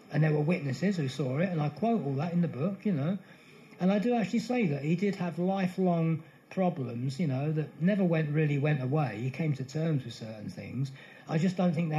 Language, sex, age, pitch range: English, male, 40-59, 135-170 Hz